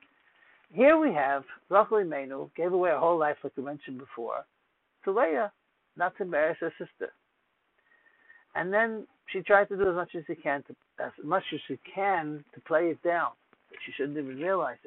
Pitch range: 155-200 Hz